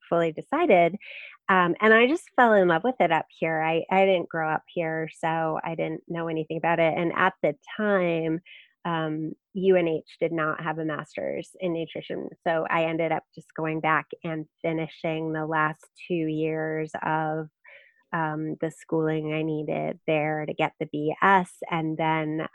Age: 30-49